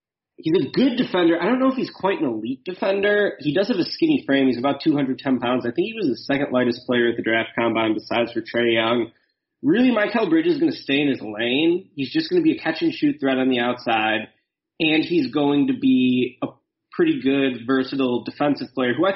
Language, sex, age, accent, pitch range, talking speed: English, male, 30-49, American, 120-190 Hz, 230 wpm